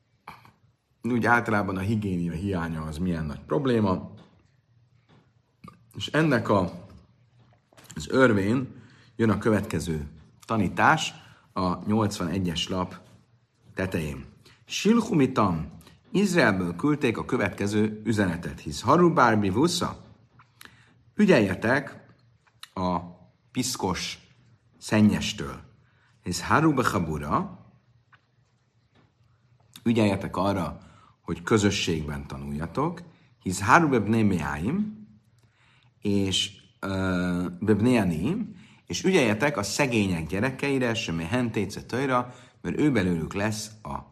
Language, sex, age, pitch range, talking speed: Hungarian, male, 50-69, 85-120 Hz, 80 wpm